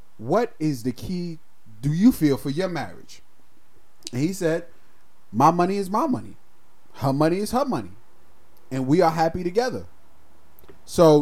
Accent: American